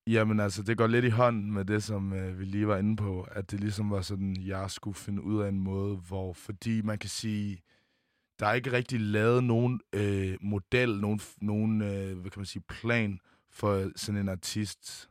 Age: 20-39